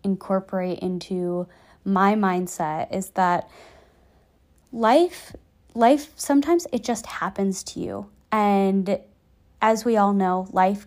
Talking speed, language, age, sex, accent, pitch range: 110 wpm, English, 20-39, female, American, 185-230 Hz